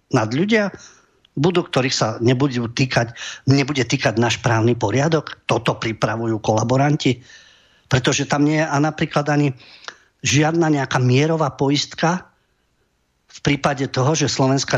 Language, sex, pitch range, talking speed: English, male, 120-160 Hz, 125 wpm